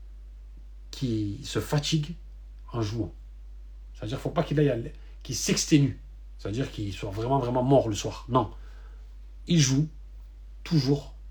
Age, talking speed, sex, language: 40-59, 135 wpm, male, French